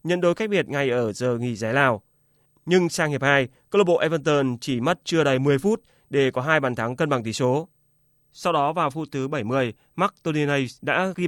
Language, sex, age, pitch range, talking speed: Vietnamese, male, 20-39, 130-165 Hz, 230 wpm